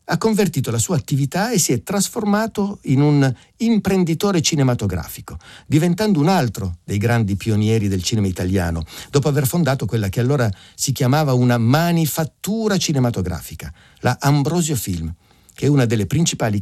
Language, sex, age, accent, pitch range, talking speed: Italian, male, 50-69, native, 100-140 Hz, 150 wpm